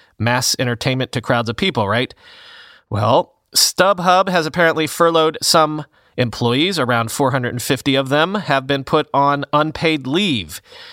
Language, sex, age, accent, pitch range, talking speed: English, male, 30-49, American, 130-170 Hz, 130 wpm